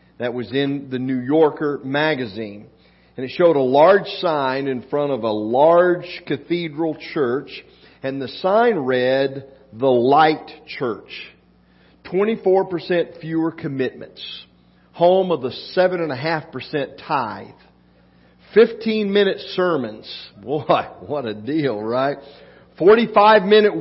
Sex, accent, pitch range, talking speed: male, American, 130-185 Hz, 110 wpm